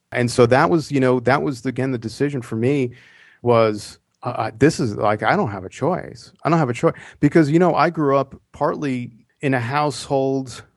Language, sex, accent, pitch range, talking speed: English, male, American, 115-140 Hz, 210 wpm